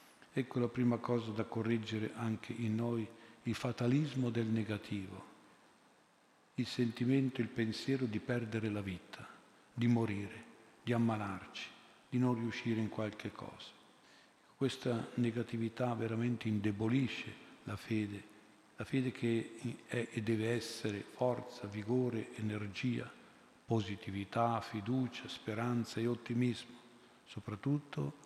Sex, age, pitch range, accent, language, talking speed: male, 50-69, 105-120 Hz, native, Italian, 115 wpm